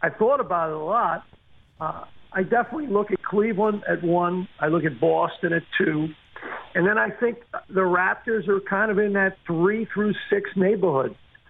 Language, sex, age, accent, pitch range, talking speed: English, male, 50-69, American, 160-205 Hz, 185 wpm